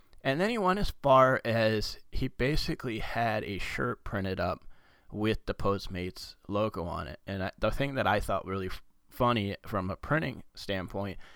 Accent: American